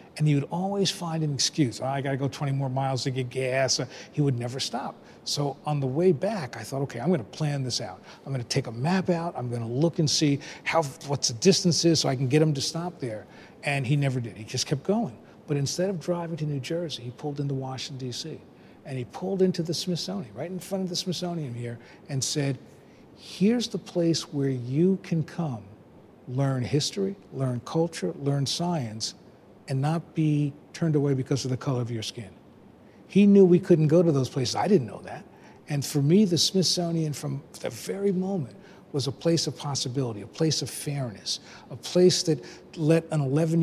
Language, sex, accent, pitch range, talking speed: English, male, American, 130-165 Hz, 210 wpm